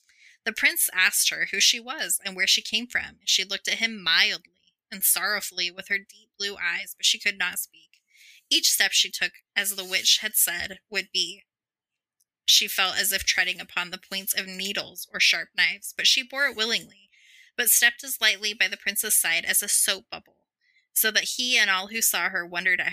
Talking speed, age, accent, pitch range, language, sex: 210 wpm, 20-39, American, 185-225 Hz, English, female